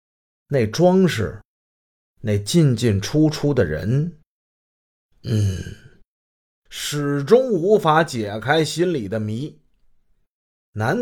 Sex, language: male, Chinese